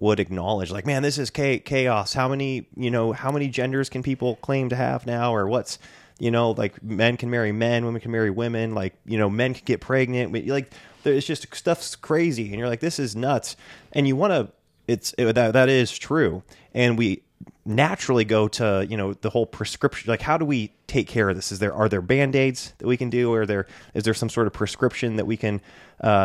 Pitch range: 100-125 Hz